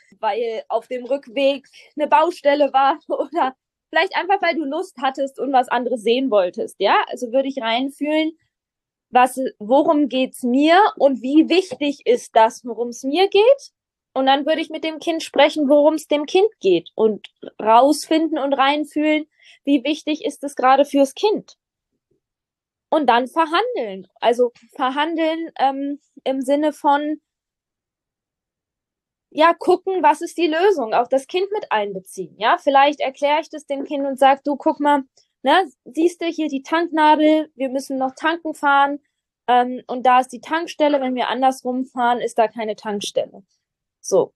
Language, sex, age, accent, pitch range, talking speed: German, female, 20-39, German, 250-315 Hz, 160 wpm